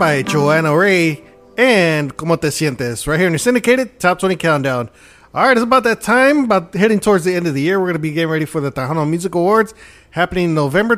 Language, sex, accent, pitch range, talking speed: English, male, American, 155-190 Hz, 230 wpm